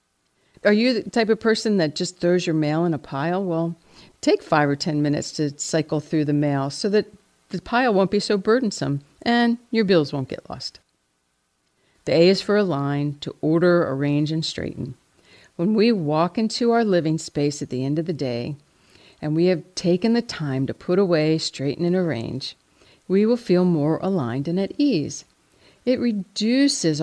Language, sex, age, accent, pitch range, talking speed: English, female, 50-69, American, 140-190 Hz, 185 wpm